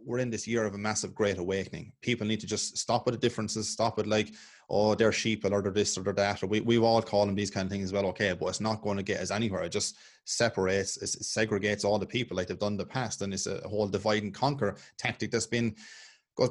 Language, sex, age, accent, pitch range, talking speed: English, male, 20-39, Irish, 100-115 Hz, 275 wpm